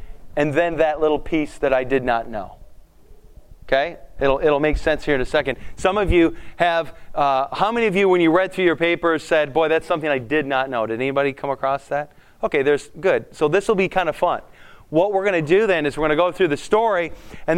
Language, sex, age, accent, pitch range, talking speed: English, male, 30-49, American, 140-180 Hz, 245 wpm